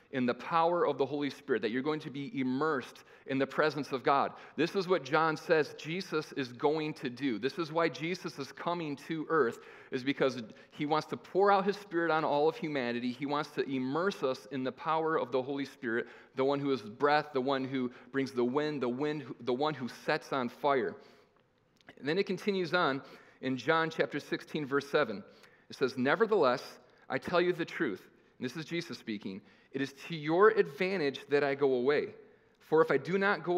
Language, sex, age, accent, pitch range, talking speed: English, male, 40-59, American, 130-165 Hz, 210 wpm